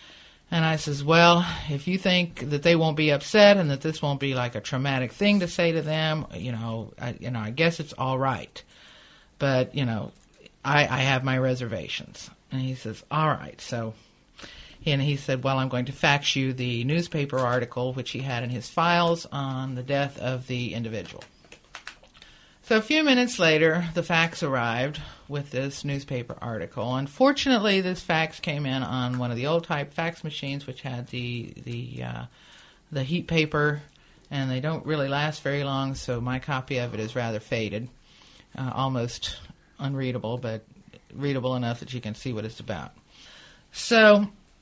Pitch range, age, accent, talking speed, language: 125-150 Hz, 50-69, American, 175 wpm, English